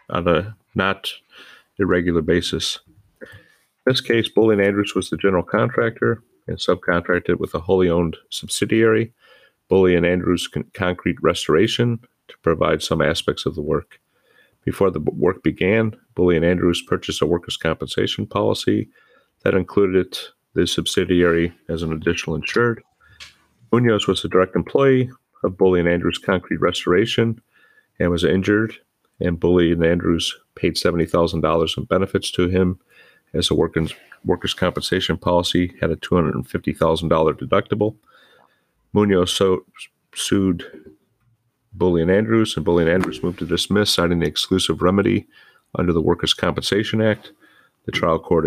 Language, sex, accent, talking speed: English, male, American, 135 wpm